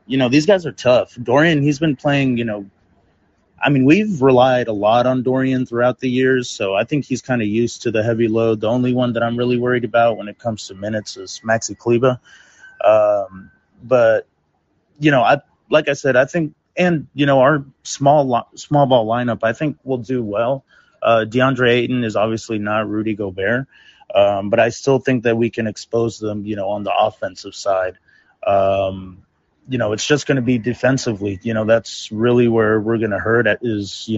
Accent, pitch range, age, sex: American, 105-130 Hz, 30-49, male